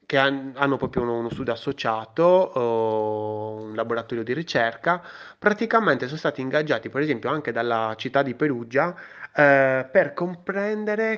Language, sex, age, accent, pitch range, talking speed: Italian, male, 20-39, native, 110-140 Hz, 130 wpm